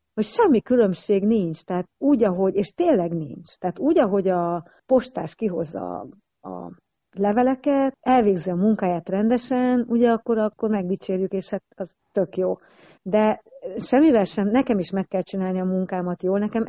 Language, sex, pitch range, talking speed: Hungarian, female, 175-215 Hz, 155 wpm